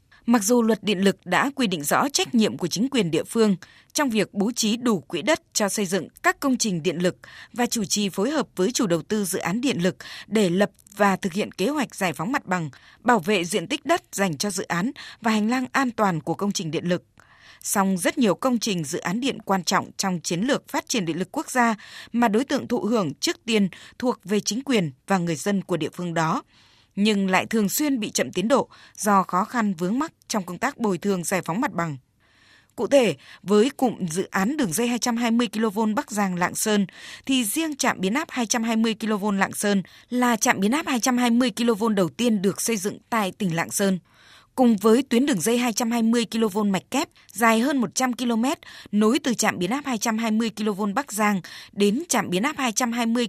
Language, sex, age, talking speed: Vietnamese, female, 20-39, 220 wpm